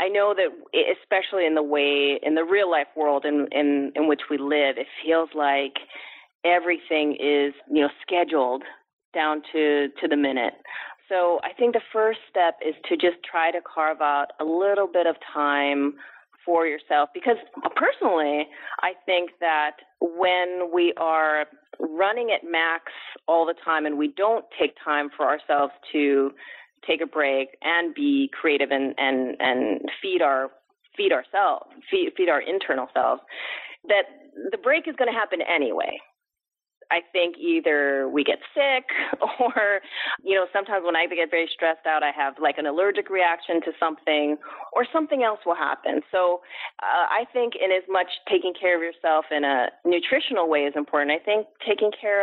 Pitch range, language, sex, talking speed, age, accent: 150-195 Hz, English, female, 170 wpm, 30-49, American